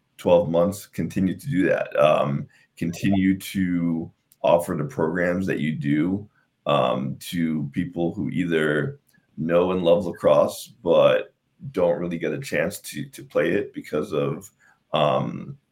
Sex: male